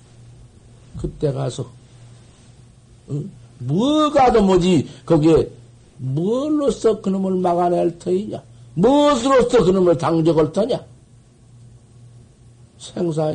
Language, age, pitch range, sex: Korean, 60-79, 120-140 Hz, male